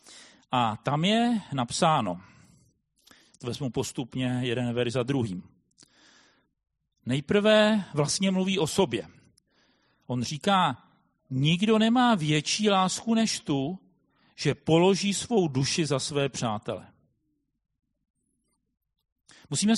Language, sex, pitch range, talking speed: Czech, male, 145-210 Hz, 95 wpm